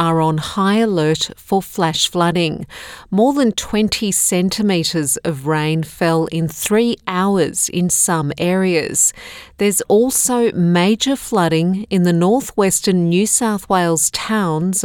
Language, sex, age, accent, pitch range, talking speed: English, female, 40-59, Australian, 165-200 Hz, 125 wpm